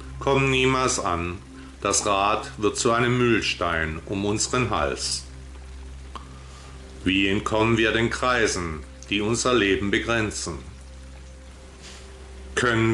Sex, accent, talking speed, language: male, German, 100 wpm, German